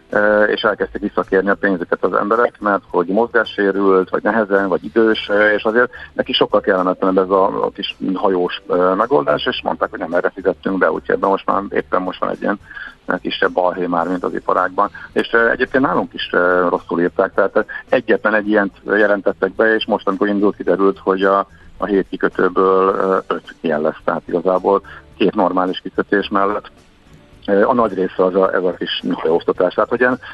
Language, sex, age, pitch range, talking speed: Hungarian, male, 50-69, 95-105 Hz, 175 wpm